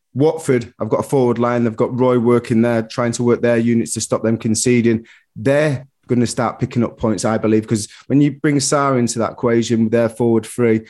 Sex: male